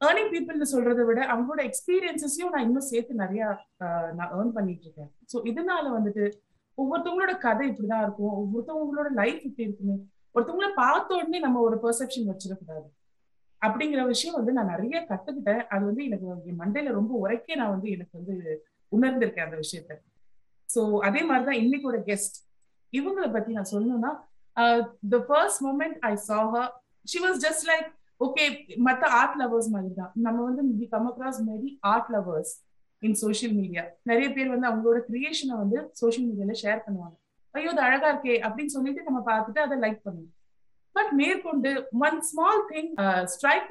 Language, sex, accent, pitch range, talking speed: Tamil, female, native, 205-275 Hz, 150 wpm